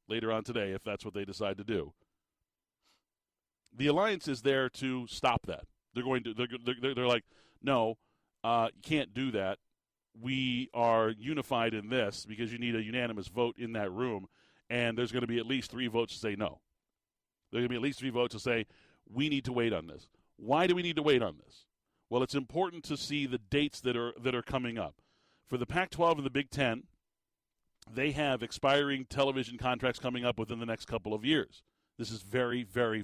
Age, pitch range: 40-59, 115-140 Hz